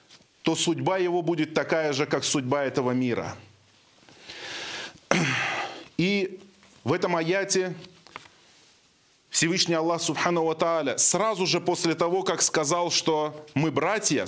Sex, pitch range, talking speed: male, 155-190 Hz, 115 wpm